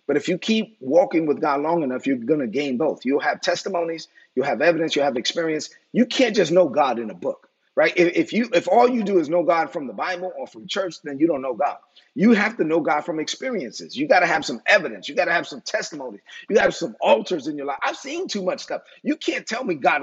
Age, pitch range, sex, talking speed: 30-49, 175-265 Hz, male, 270 wpm